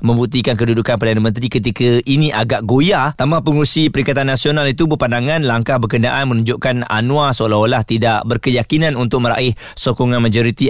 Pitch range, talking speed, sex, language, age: 110-140 Hz, 140 wpm, male, Malay, 30-49